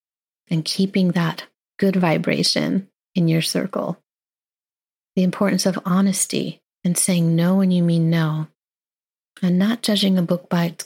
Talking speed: 145 wpm